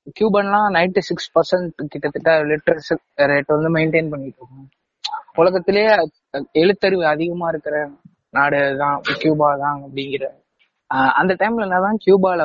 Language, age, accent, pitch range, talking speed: Tamil, 20-39, native, 155-205 Hz, 115 wpm